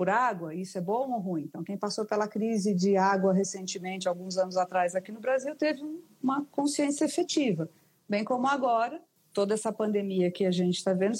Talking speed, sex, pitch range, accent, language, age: 195 wpm, female, 185-240 Hz, Brazilian, Portuguese, 40-59